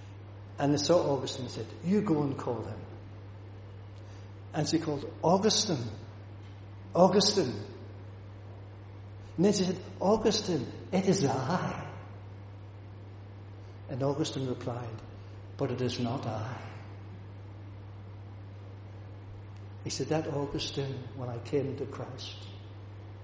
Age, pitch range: 60-79, 100-125 Hz